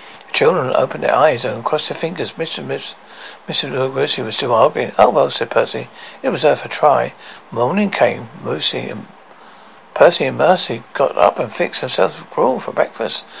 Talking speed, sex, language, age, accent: 175 wpm, male, English, 60-79, British